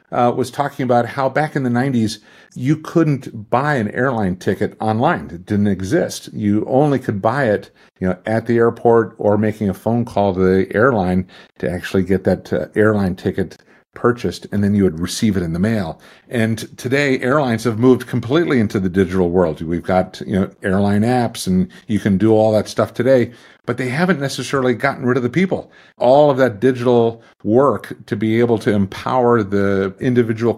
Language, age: English, 50-69